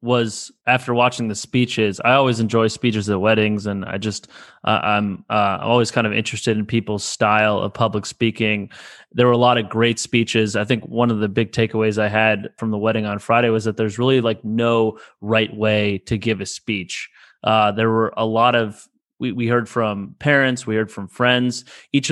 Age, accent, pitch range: 20-39, American, 110-125 Hz